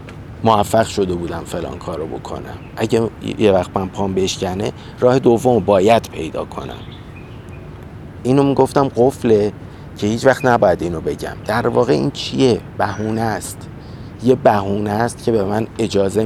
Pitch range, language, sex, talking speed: 100-120 Hz, Persian, male, 150 wpm